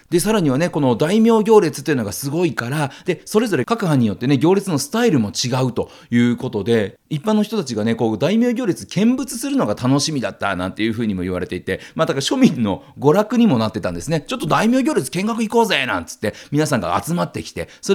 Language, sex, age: Japanese, male, 40-59